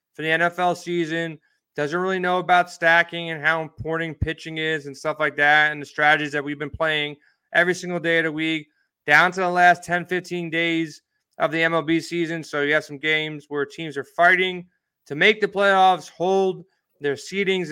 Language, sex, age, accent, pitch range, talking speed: English, male, 20-39, American, 155-185 Hz, 195 wpm